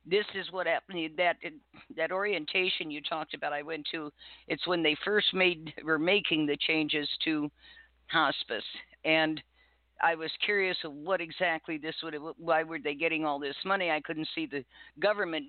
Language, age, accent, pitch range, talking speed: English, 50-69, American, 150-170 Hz, 180 wpm